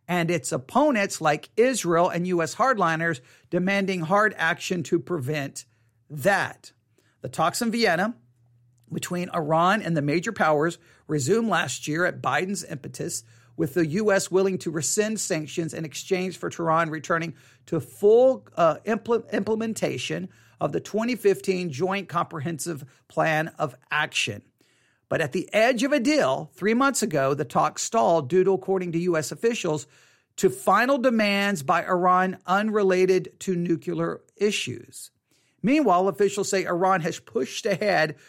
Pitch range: 160-205 Hz